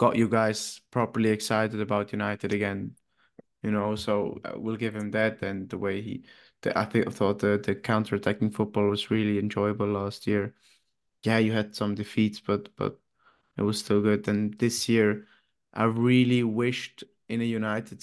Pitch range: 105-120 Hz